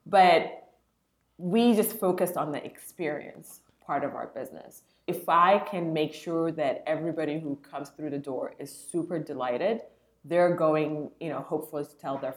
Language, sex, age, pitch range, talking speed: English, female, 20-39, 155-190 Hz, 165 wpm